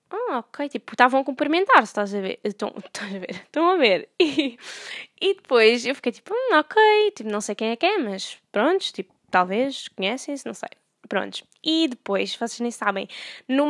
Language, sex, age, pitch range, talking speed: Portuguese, female, 10-29, 200-280 Hz, 195 wpm